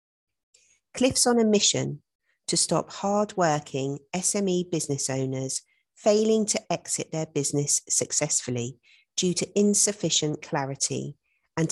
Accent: British